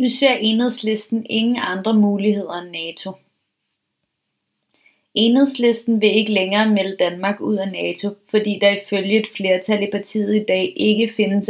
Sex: female